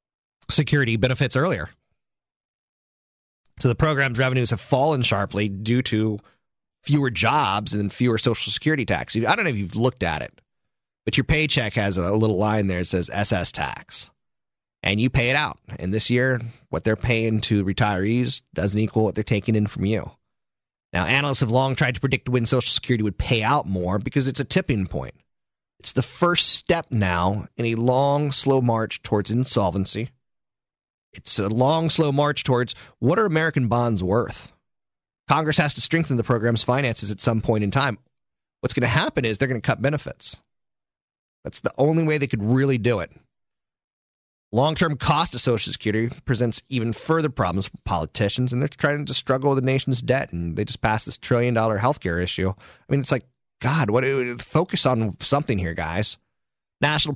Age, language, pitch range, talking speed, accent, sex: 30-49, English, 105-135 Hz, 180 wpm, American, male